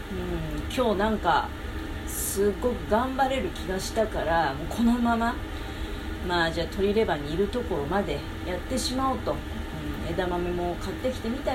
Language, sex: Japanese, female